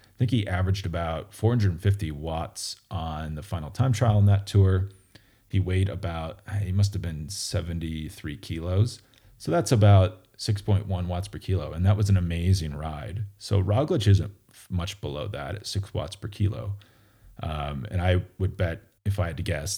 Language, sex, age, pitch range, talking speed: English, male, 30-49, 90-105 Hz, 175 wpm